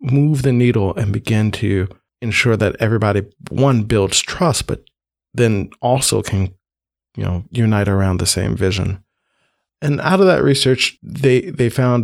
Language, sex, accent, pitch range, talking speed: English, male, American, 95-120 Hz, 155 wpm